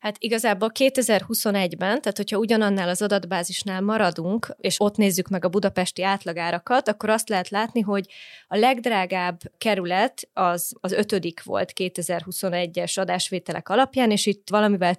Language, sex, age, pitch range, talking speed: Hungarian, female, 20-39, 180-205 Hz, 135 wpm